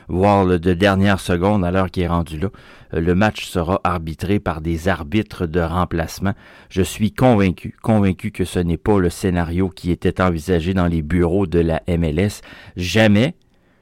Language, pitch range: French, 85-105 Hz